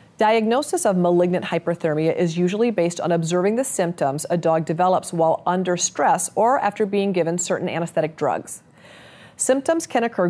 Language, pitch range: English, 165-200 Hz